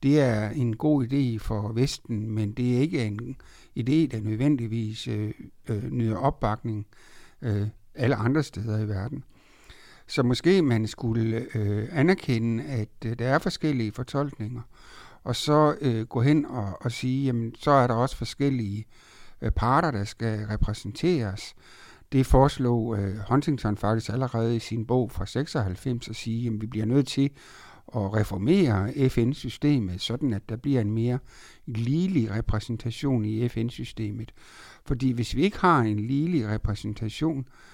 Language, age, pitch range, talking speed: Danish, 60-79, 110-135 Hz, 135 wpm